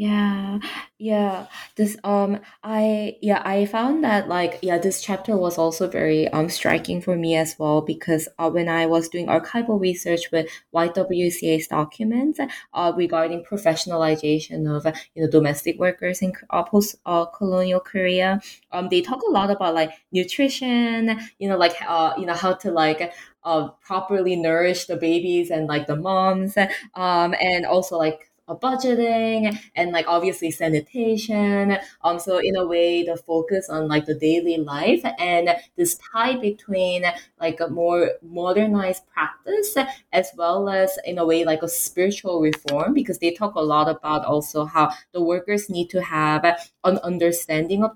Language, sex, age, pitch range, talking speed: English, female, 20-39, 165-205 Hz, 165 wpm